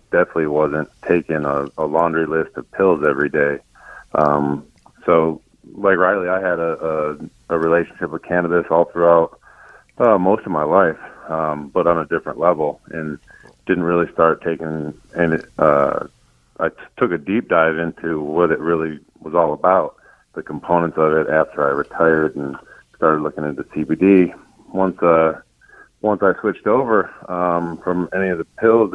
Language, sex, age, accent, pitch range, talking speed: English, male, 40-59, American, 75-85 Hz, 165 wpm